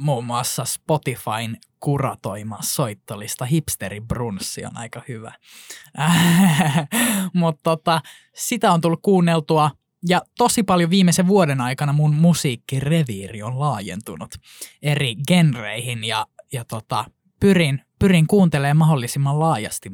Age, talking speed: 20-39, 110 wpm